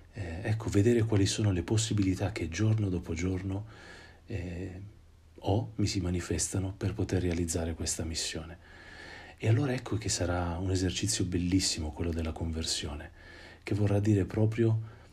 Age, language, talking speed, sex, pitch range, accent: 40-59, Italian, 145 wpm, male, 85-100 Hz, native